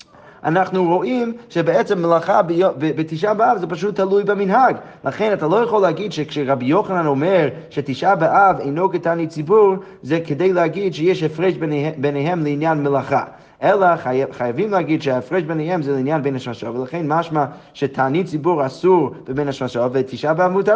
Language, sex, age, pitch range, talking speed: Hebrew, male, 30-49, 140-185 Hz, 145 wpm